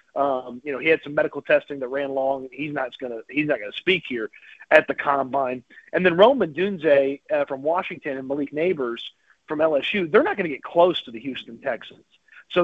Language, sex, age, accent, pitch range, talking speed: English, male, 40-59, American, 135-180 Hz, 225 wpm